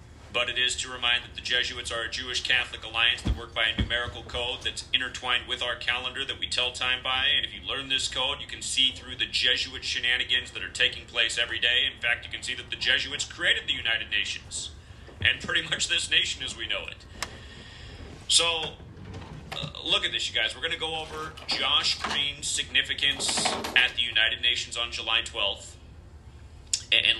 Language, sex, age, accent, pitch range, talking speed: English, male, 40-59, American, 95-130 Hz, 200 wpm